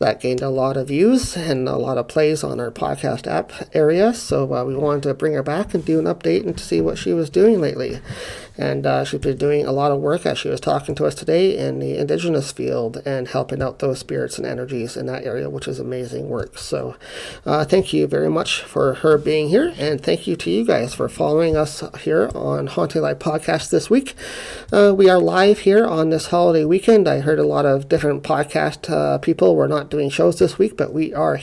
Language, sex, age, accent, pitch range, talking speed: English, male, 40-59, American, 130-160 Hz, 235 wpm